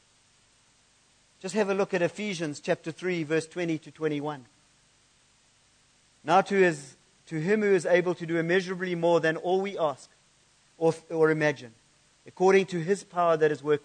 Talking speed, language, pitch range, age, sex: 165 wpm, English, 150-195 Hz, 50-69, male